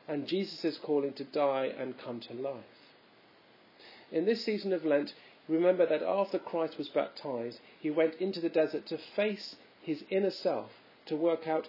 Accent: British